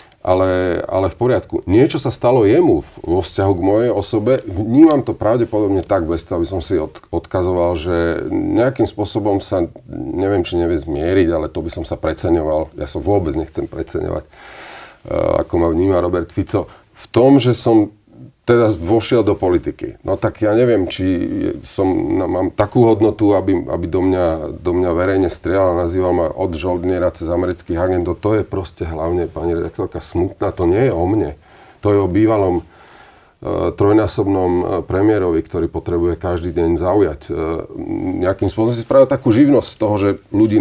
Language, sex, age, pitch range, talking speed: Slovak, male, 40-59, 90-110 Hz, 165 wpm